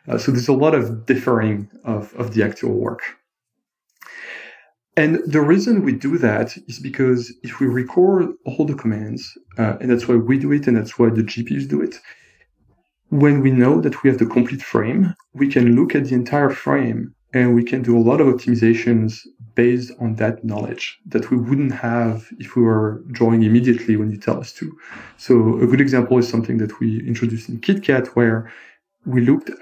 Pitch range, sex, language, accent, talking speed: 115-130 Hz, male, English, French, 195 wpm